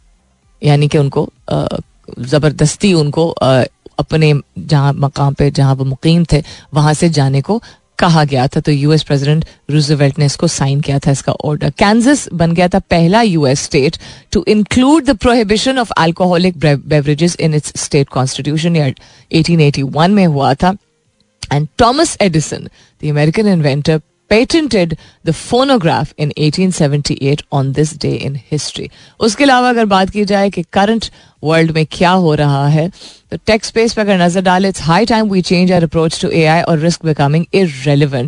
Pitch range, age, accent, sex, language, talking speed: 145-190 Hz, 30-49, native, female, Hindi, 165 wpm